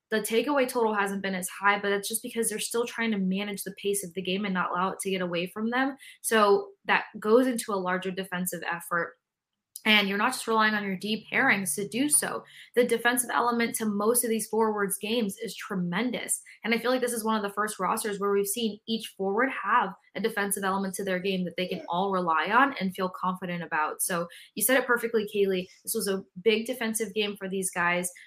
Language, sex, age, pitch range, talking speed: English, female, 20-39, 190-230 Hz, 230 wpm